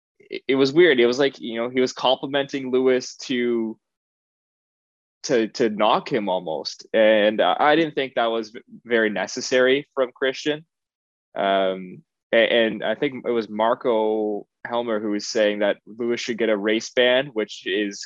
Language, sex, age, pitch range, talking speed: English, male, 20-39, 105-125 Hz, 165 wpm